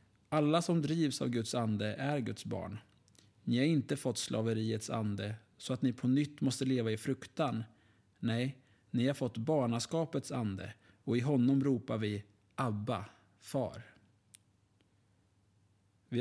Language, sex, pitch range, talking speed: Swedish, male, 105-135 Hz, 140 wpm